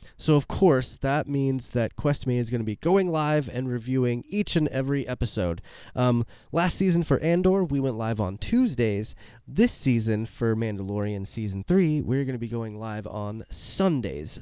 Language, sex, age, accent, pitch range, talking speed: English, male, 20-39, American, 110-150 Hz, 180 wpm